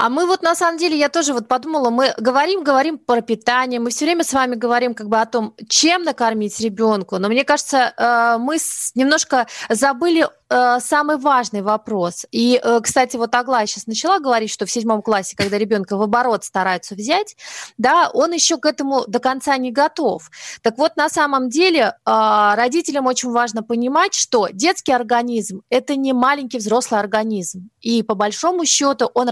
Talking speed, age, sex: 175 wpm, 20-39, female